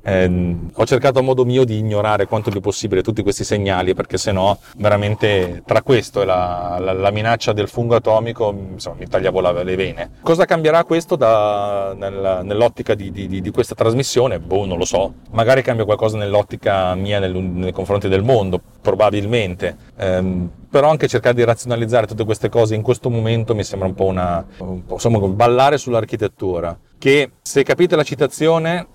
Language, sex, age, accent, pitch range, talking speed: Italian, male, 40-59, native, 95-120 Hz, 180 wpm